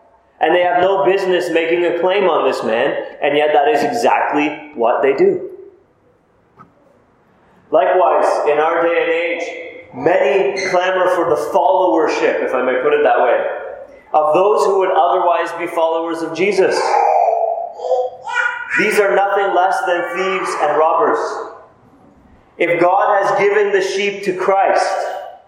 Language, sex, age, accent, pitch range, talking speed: English, male, 30-49, American, 180-255 Hz, 145 wpm